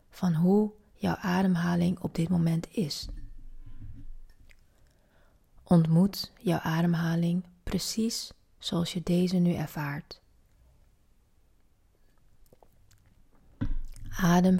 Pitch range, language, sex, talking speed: 145-185 Hz, Dutch, female, 75 wpm